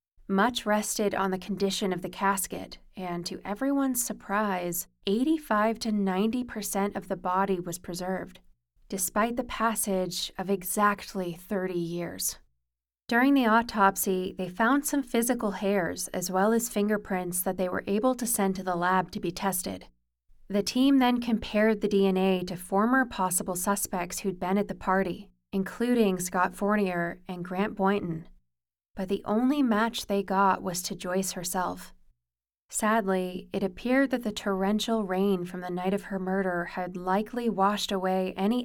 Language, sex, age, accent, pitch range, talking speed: English, female, 20-39, American, 180-210 Hz, 155 wpm